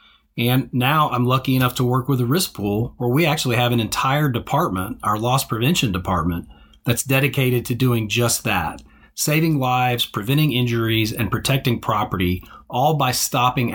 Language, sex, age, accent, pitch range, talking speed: English, male, 40-59, American, 110-135 Hz, 165 wpm